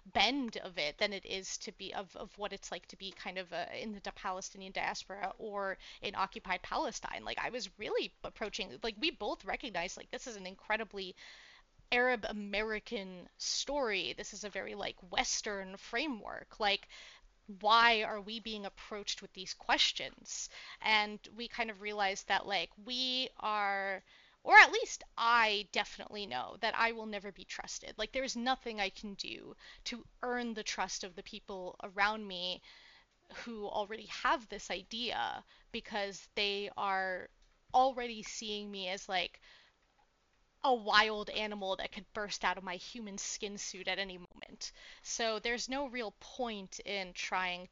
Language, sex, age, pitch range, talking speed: English, female, 30-49, 195-230 Hz, 165 wpm